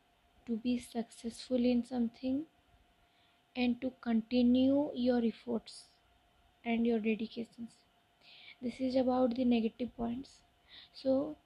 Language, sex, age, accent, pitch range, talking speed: Hindi, female, 20-39, native, 235-255 Hz, 105 wpm